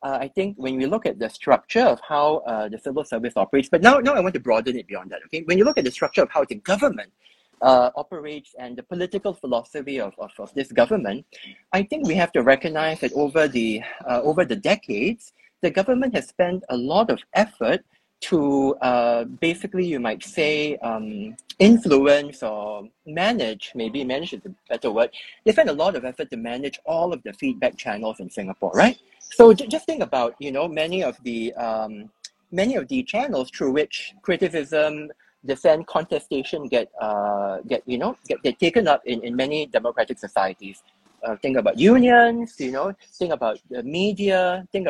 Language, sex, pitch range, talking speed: English, male, 130-200 Hz, 195 wpm